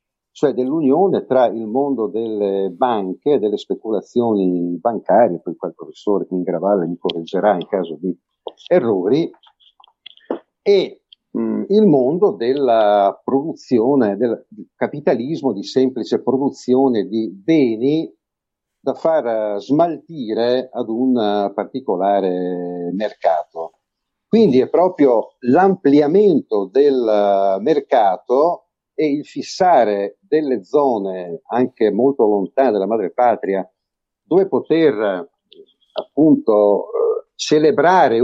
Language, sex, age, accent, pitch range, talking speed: Italian, male, 50-69, native, 100-140 Hz, 100 wpm